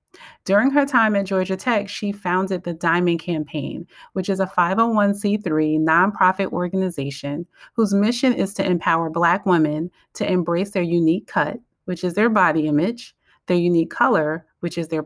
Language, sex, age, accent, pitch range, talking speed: English, female, 30-49, American, 175-215 Hz, 160 wpm